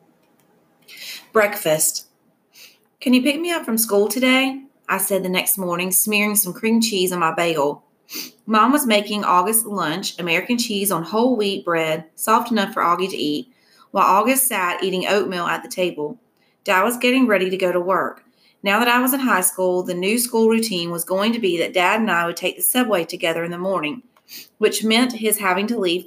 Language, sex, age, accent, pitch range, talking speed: English, female, 30-49, American, 175-225 Hz, 200 wpm